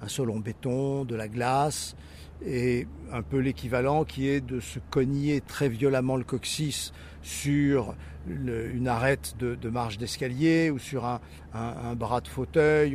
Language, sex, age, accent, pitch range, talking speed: French, male, 50-69, French, 120-150 Hz, 160 wpm